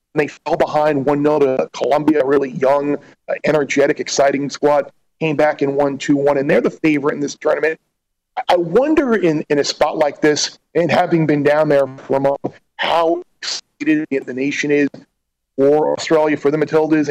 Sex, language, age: male, English, 40-59